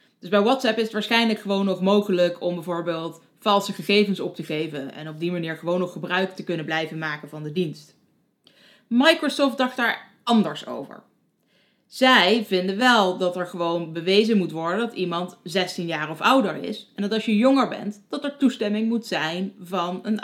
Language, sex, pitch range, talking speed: Dutch, female, 180-235 Hz, 190 wpm